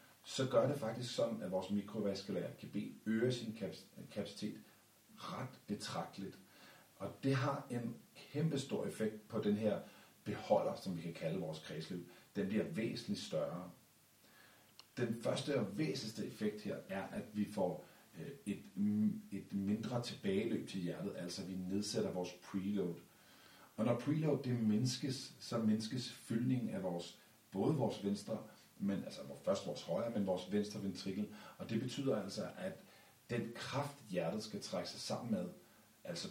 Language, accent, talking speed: Danish, native, 150 wpm